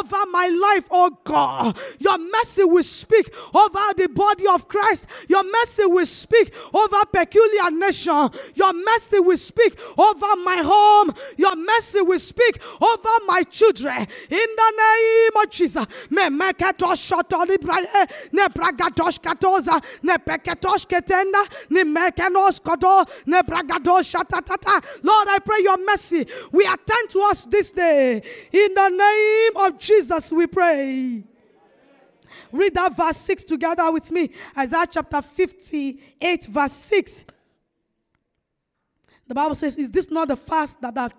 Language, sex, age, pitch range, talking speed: English, female, 20-39, 320-405 Hz, 115 wpm